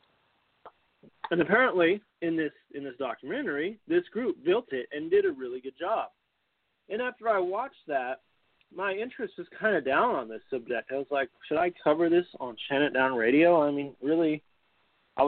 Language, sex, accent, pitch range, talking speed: English, male, American, 130-170 Hz, 180 wpm